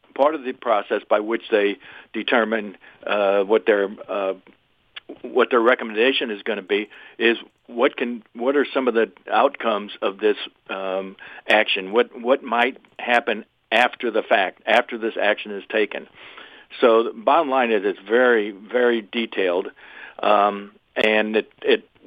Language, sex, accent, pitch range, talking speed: English, male, American, 105-120 Hz, 155 wpm